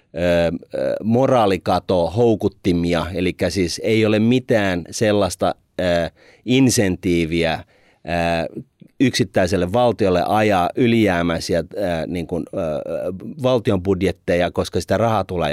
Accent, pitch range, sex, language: native, 90-105 Hz, male, Finnish